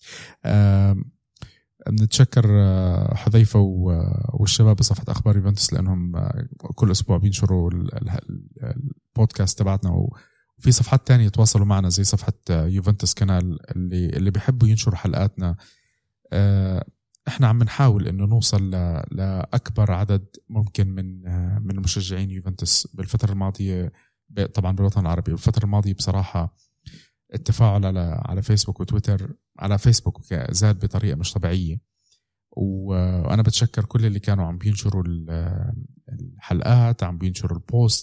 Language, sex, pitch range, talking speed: Arabic, male, 95-115 Hz, 110 wpm